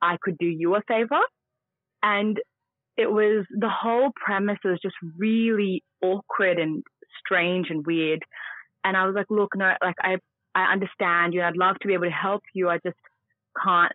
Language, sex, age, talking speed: English, female, 20-39, 180 wpm